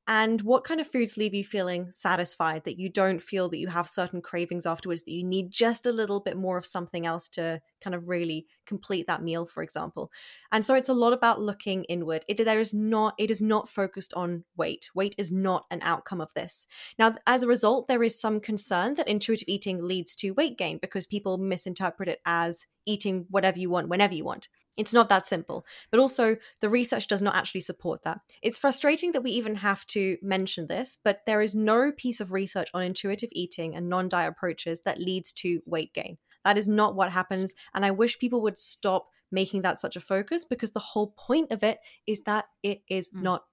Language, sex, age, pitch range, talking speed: English, female, 10-29, 180-225 Hz, 215 wpm